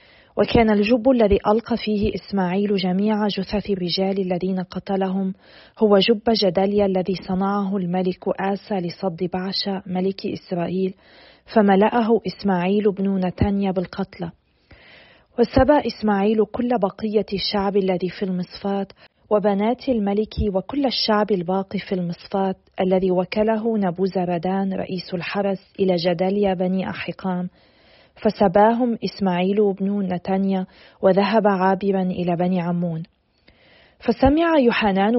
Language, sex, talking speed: Arabic, female, 105 wpm